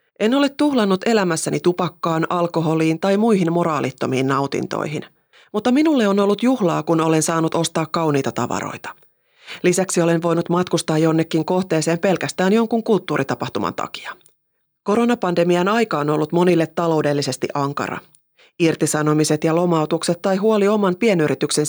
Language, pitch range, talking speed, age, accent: Finnish, 155-200 Hz, 125 wpm, 30-49, native